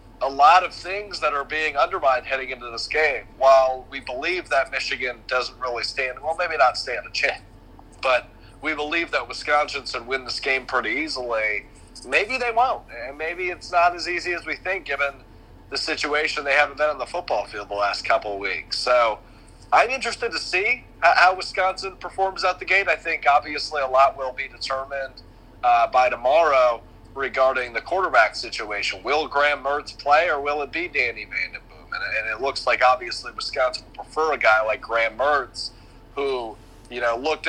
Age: 40-59